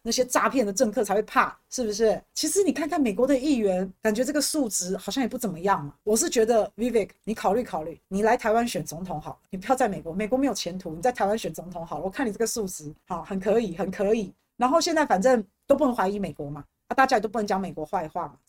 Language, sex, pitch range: Chinese, female, 190-255 Hz